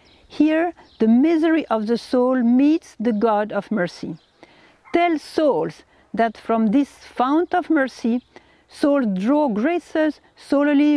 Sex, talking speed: female, 125 wpm